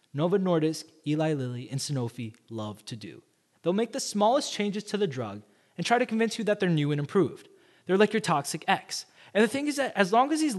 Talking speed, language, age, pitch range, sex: 230 wpm, English, 20-39, 135-205 Hz, male